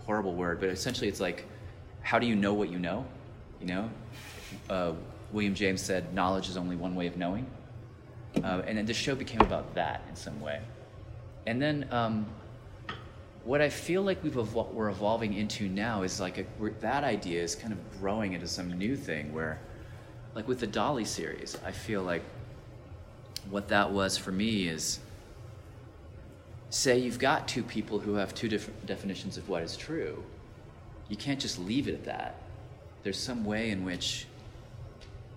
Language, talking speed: English, 175 wpm